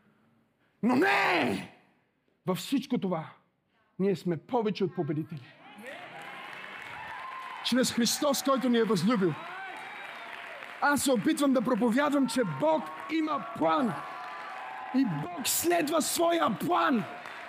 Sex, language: male, Bulgarian